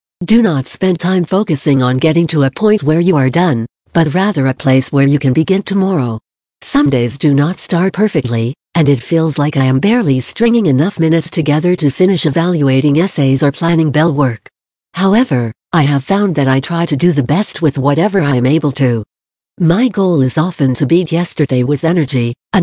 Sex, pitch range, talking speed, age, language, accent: female, 135-180 Hz, 200 wpm, 60-79, English, American